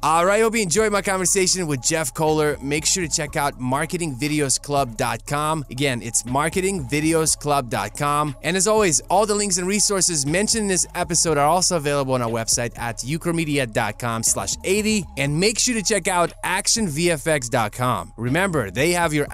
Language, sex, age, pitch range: English, male, 20-39, 135-180 Hz